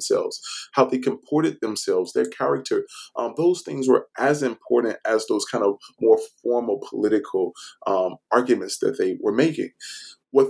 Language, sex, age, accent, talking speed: English, male, 20-39, American, 155 wpm